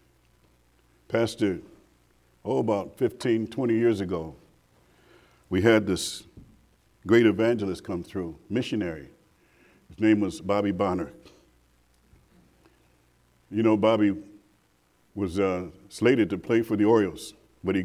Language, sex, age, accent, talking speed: English, male, 50-69, American, 110 wpm